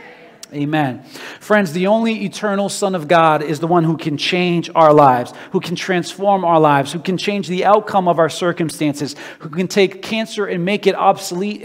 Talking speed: 190 wpm